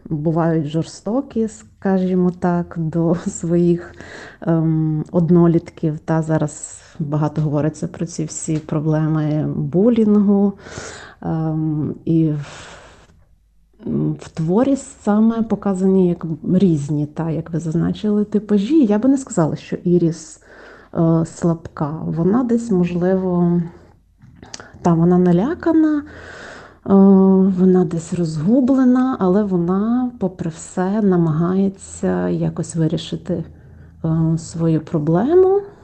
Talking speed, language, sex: 85 wpm, Ukrainian, female